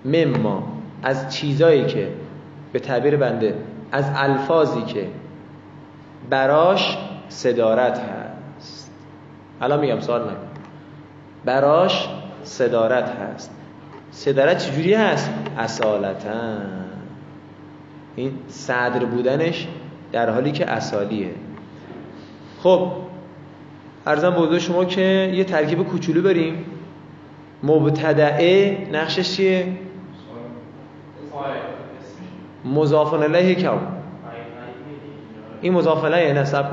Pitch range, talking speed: 140-175 Hz, 75 wpm